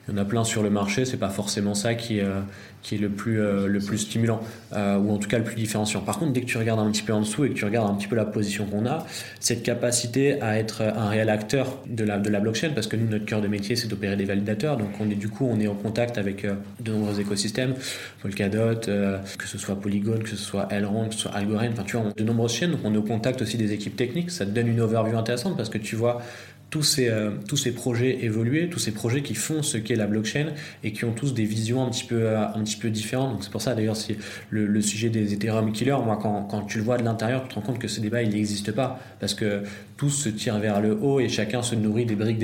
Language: French